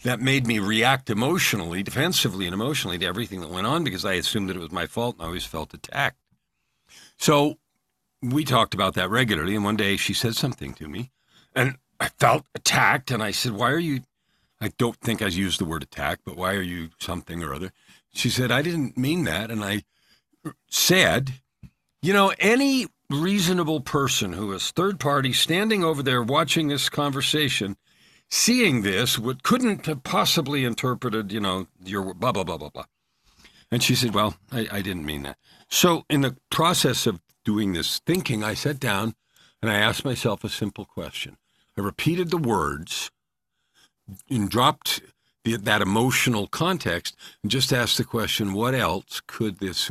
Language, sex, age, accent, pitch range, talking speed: English, male, 50-69, American, 100-145 Hz, 180 wpm